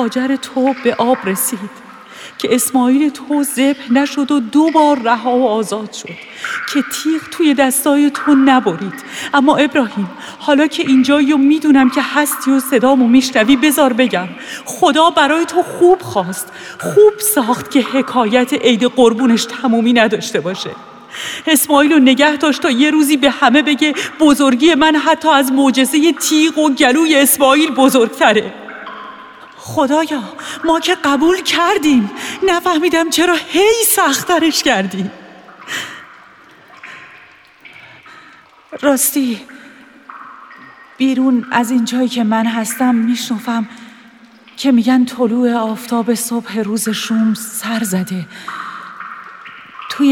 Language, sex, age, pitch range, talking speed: Persian, female, 40-59, 235-300 Hz, 120 wpm